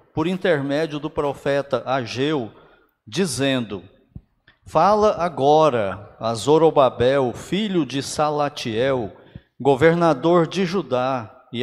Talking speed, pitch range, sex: 90 wpm, 130-175 Hz, male